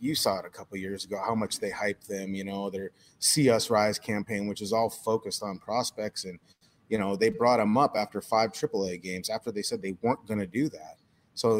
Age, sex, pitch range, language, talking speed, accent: 30-49, male, 105-115 Hz, English, 245 wpm, American